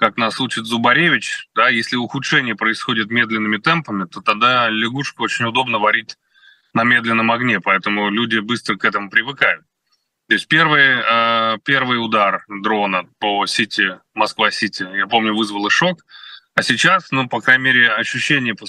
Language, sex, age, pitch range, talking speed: Russian, male, 20-39, 110-150 Hz, 150 wpm